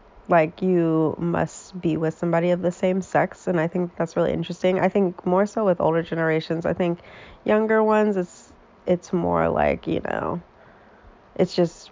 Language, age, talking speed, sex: English, 20-39, 175 wpm, female